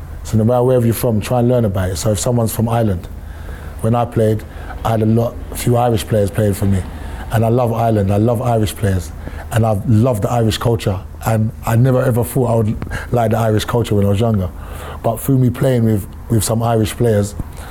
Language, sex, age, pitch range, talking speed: English, male, 20-39, 100-120 Hz, 230 wpm